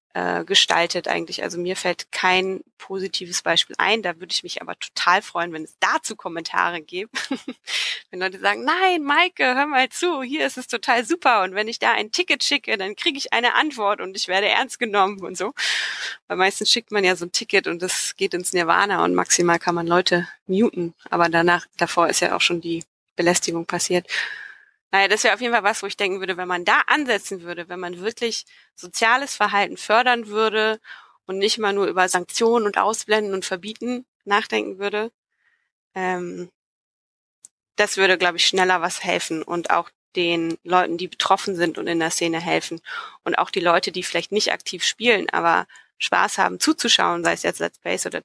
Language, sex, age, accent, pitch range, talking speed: German, female, 20-39, German, 175-225 Hz, 195 wpm